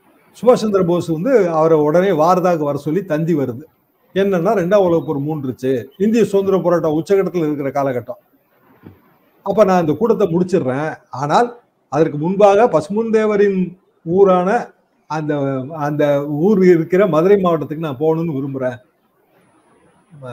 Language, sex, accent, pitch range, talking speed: Tamil, male, native, 145-185 Hz, 120 wpm